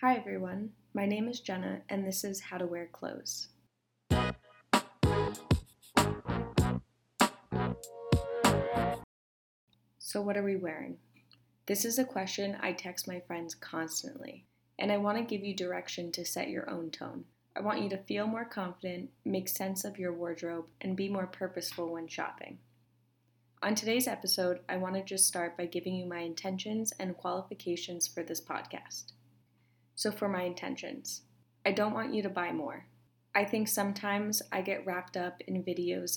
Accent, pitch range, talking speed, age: American, 170-200 Hz, 160 wpm, 20-39